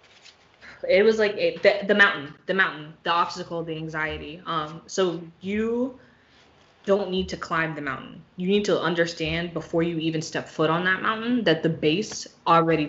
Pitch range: 155-175 Hz